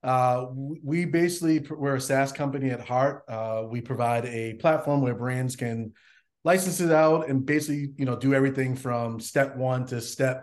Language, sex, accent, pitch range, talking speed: English, male, American, 120-140 Hz, 180 wpm